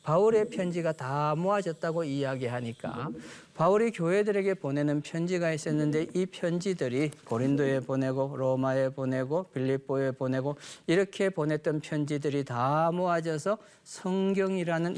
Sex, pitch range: male, 130-170 Hz